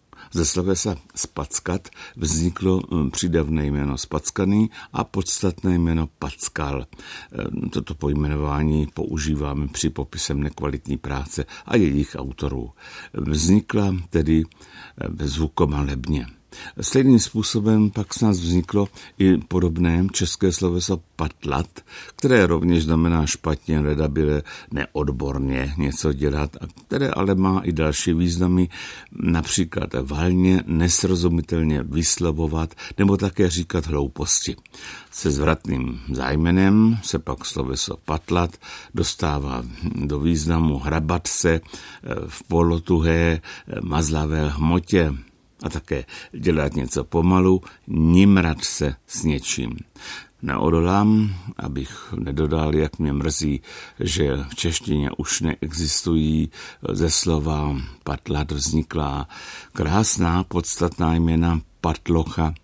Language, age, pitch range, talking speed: Czech, 60-79, 75-90 Hz, 100 wpm